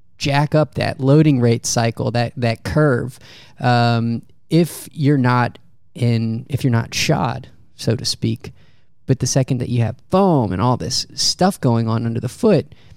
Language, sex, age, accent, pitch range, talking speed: English, male, 30-49, American, 120-140 Hz, 170 wpm